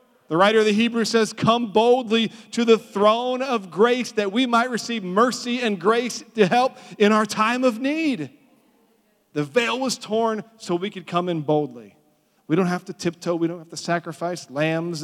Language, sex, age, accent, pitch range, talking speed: English, male, 40-59, American, 165-210 Hz, 190 wpm